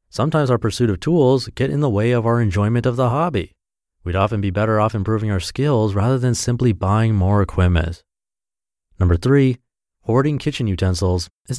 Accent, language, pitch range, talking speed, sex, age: American, English, 90-130 Hz, 180 wpm, male, 30-49